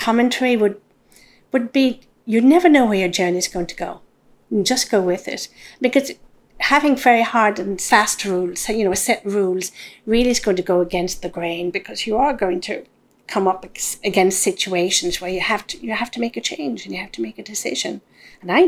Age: 40-59